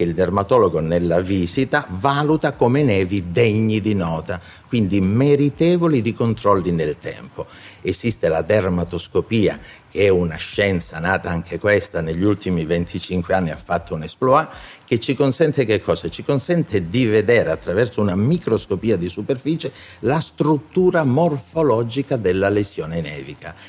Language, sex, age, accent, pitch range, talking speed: Italian, male, 50-69, native, 95-140 Hz, 135 wpm